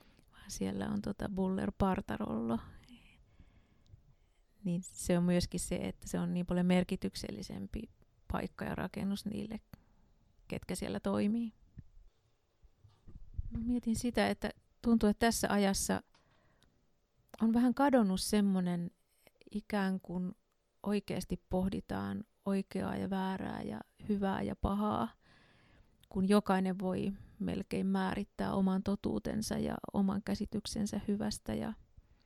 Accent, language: native, Finnish